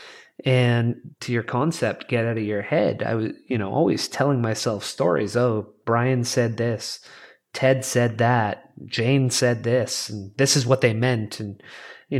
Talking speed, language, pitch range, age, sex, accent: 170 wpm, English, 120-140 Hz, 30-49, male, American